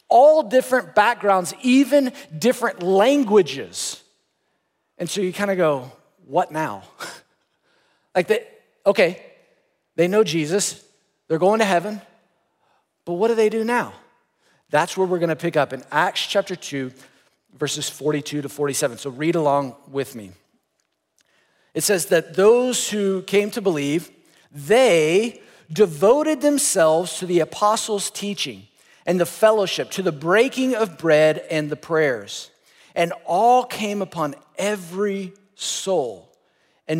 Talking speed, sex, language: 130 wpm, male, English